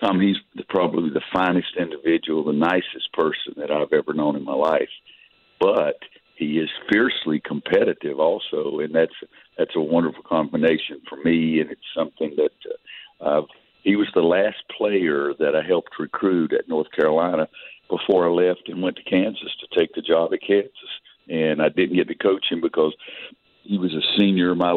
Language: English